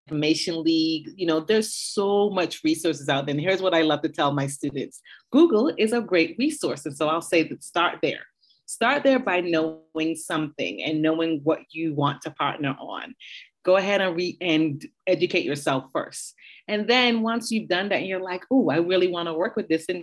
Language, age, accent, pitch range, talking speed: English, 30-49, American, 155-190 Hz, 205 wpm